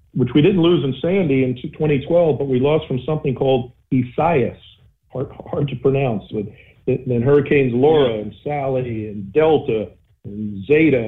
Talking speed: 155 wpm